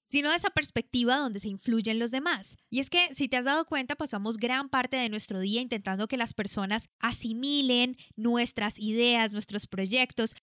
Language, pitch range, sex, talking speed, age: Spanish, 215-275 Hz, female, 185 wpm, 10-29